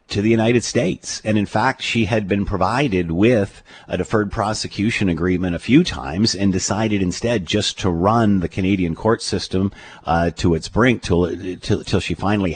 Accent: American